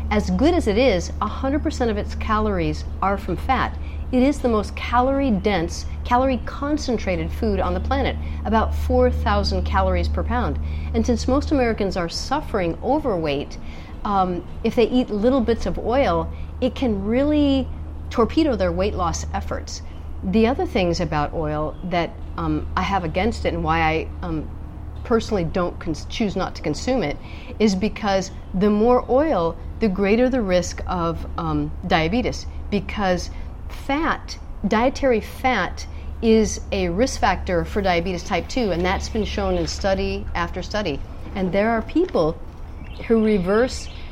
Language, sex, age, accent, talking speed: English, female, 40-59, American, 150 wpm